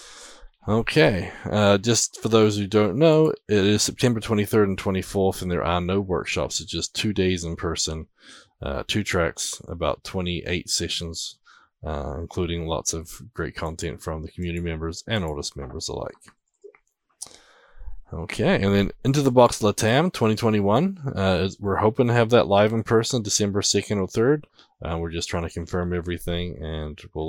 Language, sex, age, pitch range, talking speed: English, male, 20-39, 80-100 Hz, 165 wpm